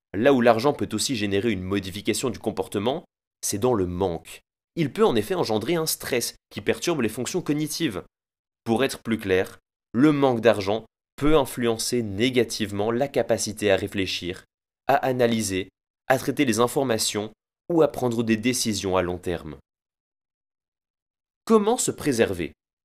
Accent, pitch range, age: French, 100-145 Hz, 20-39